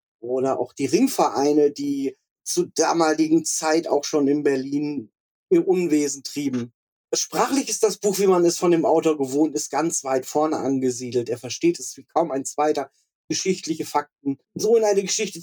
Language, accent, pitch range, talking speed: German, German, 145-200 Hz, 170 wpm